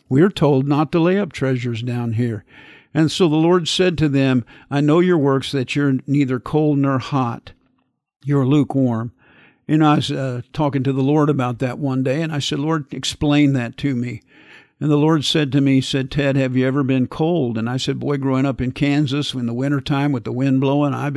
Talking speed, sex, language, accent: 220 wpm, male, English, American